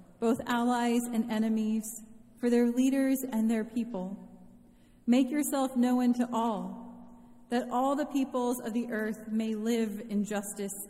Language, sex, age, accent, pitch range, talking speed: English, female, 30-49, American, 195-240 Hz, 145 wpm